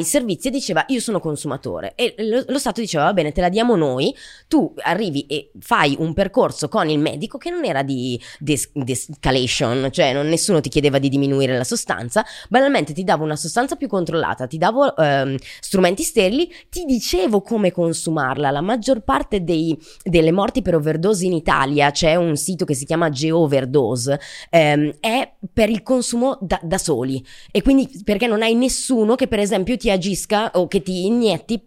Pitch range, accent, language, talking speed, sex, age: 150-225 Hz, native, Italian, 185 wpm, female, 20-39